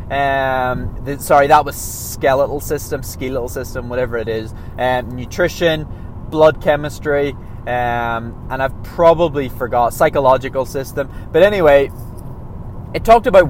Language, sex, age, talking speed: English, male, 20-39, 120 wpm